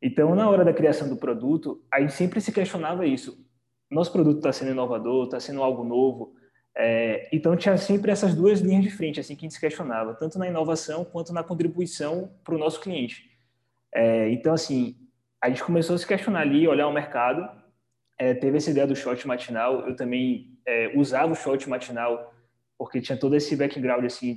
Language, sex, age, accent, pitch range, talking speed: Portuguese, male, 20-39, Brazilian, 125-160 Hz, 195 wpm